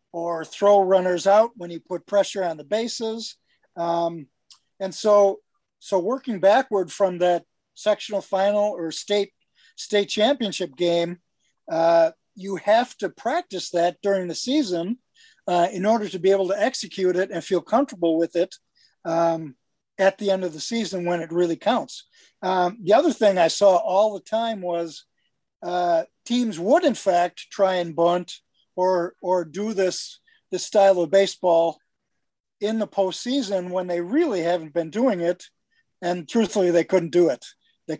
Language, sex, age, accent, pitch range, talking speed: English, male, 50-69, American, 170-205 Hz, 165 wpm